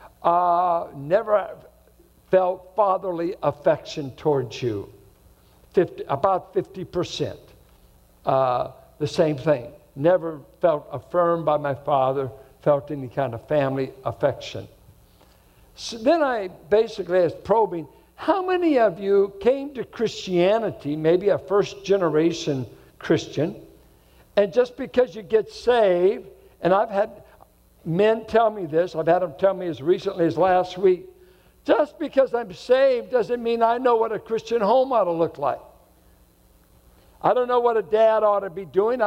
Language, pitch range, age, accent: English, 155-230 Hz, 60-79, American